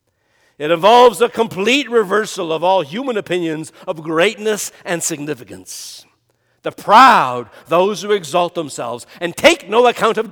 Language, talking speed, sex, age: English, 140 wpm, male, 60-79